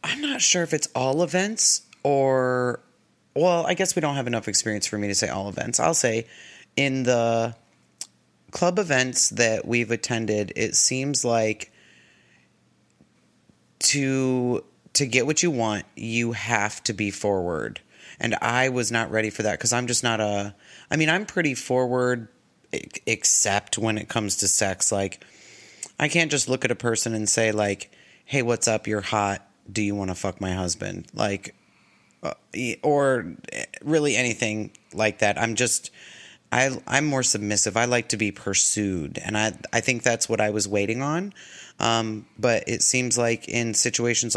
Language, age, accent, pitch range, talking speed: English, 30-49, American, 100-125 Hz, 170 wpm